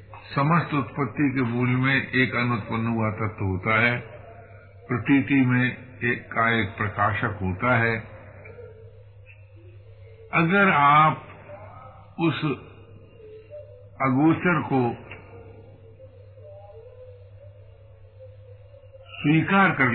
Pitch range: 100-130 Hz